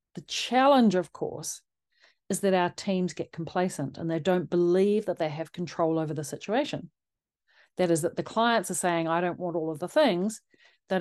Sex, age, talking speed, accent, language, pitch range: female, 40-59, 195 wpm, Australian, English, 165-215 Hz